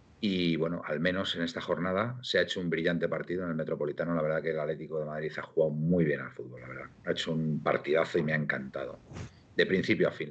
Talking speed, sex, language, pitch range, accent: 250 wpm, male, Spanish, 80-95 Hz, Spanish